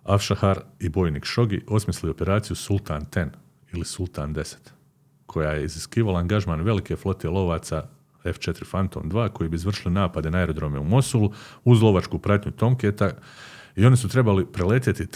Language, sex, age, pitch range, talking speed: Croatian, male, 40-59, 85-105 Hz, 150 wpm